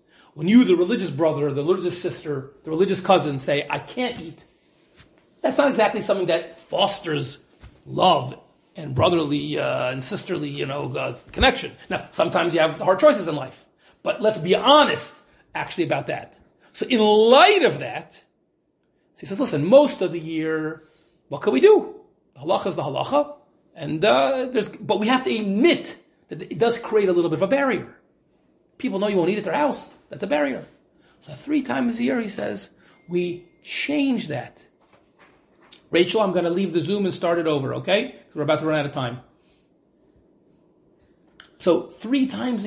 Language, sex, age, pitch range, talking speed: English, male, 40-59, 160-245 Hz, 180 wpm